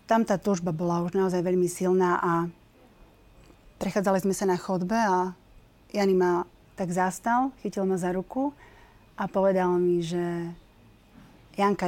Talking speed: 140 wpm